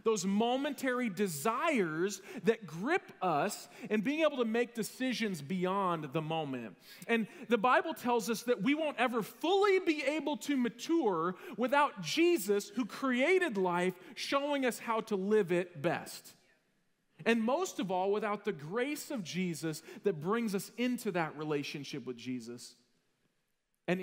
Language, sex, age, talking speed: English, male, 40-59, 145 wpm